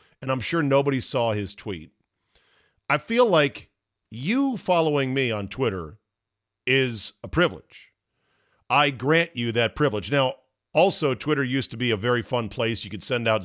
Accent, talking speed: American, 165 wpm